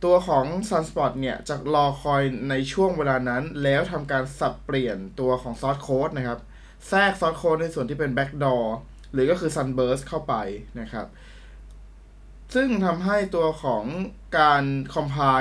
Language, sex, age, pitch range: Thai, male, 20-39, 130-160 Hz